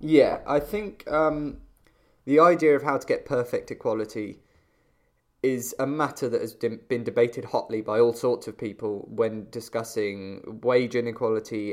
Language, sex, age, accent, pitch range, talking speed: English, male, 10-29, British, 115-150 Hz, 150 wpm